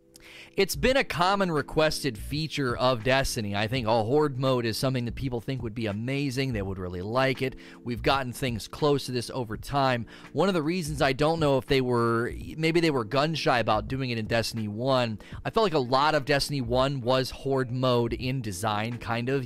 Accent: American